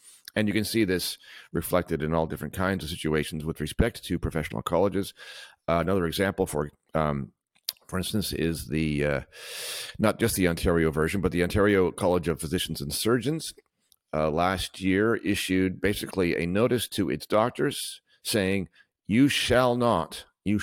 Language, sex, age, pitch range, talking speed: English, male, 50-69, 80-105 Hz, 160 wpm